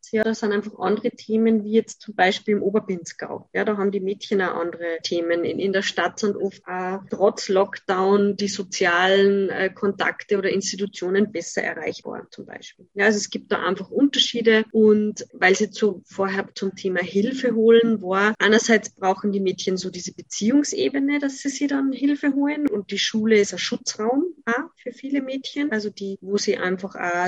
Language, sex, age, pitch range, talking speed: German, female, 20-39, 195-220 Hz, 190 wpm